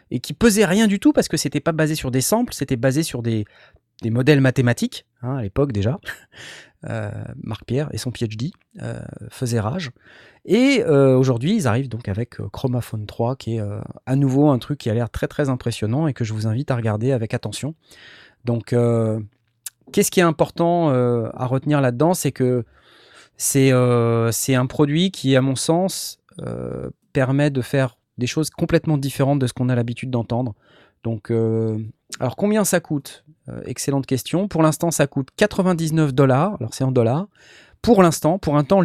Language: French